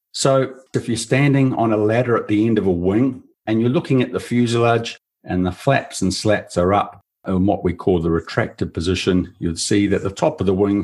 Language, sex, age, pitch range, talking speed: English, male, 50-69, 90-115 Hz, 225 wpm